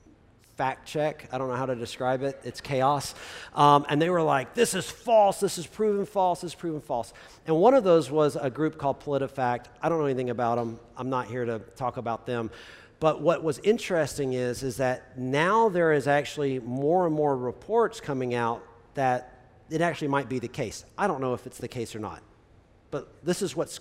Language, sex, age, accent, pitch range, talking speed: English, male, 40-59, American, 125-170 Hz, 215 wpm